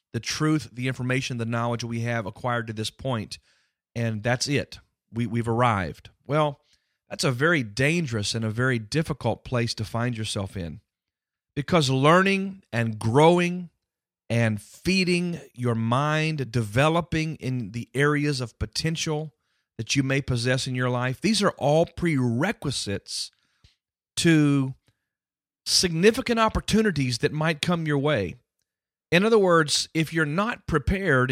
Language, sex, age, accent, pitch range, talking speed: English, male, 40-59, American, 120-160 Hz, 135 wpm